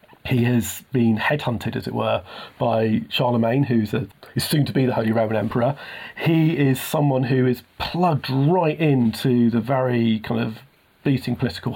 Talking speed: 165 wpm